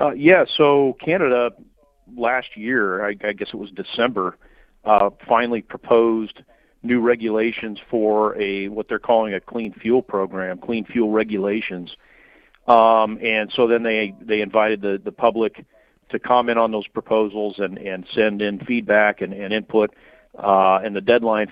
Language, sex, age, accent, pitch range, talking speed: English, male, 50-69, American, 100-115 Hz, 155 wpm